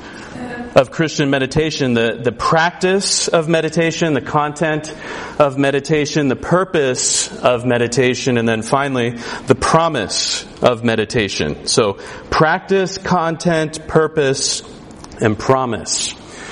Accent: American